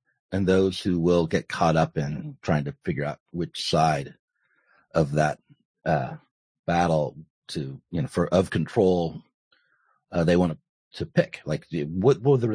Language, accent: English, American